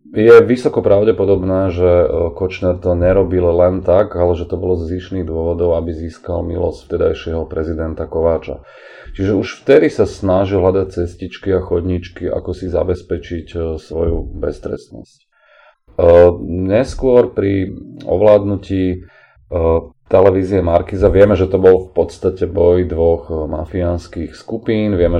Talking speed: 120 wpm